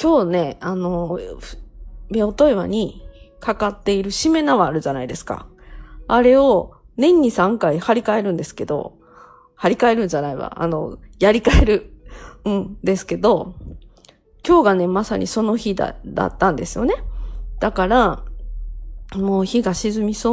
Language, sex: Japanese, female